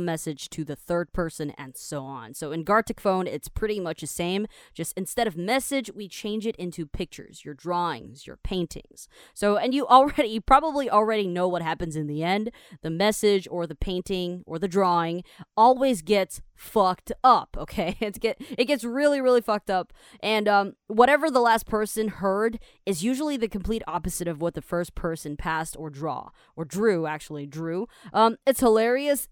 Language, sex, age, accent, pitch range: Chinese, female, 20-39, American, 175-235 Hz